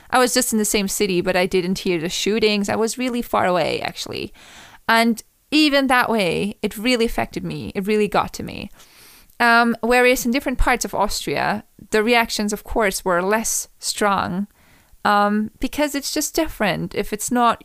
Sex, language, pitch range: female, English, 200-260 Hz